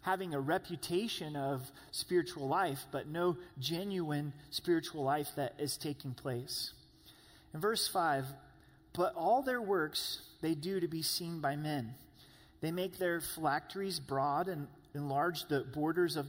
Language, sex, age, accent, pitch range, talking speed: English, male, 30-49, American, 140-180 Hz, 145 wpm